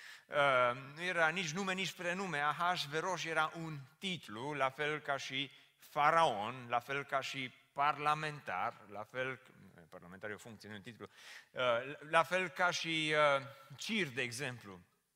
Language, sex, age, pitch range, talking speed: Romanian, male, 30-49, 140-185 Hz, 160 wpm